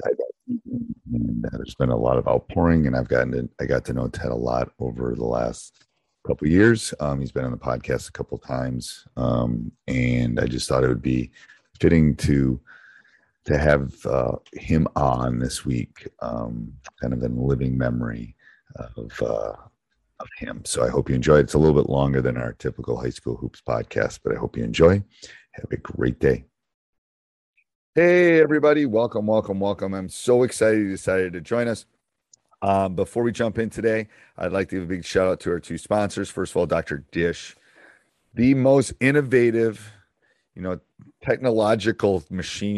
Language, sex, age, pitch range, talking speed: English, male, 40-59, 65-105 Hz, 175 wpm